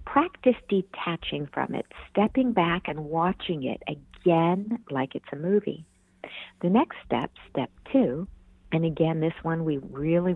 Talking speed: 145 wpm